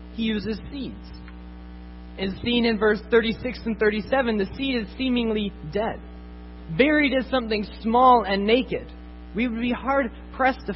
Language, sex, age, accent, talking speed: English, male, 20-39, American, 145 wpm